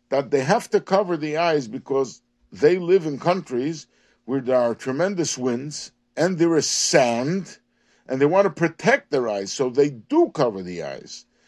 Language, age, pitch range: English, 50-69, 135-210 Hz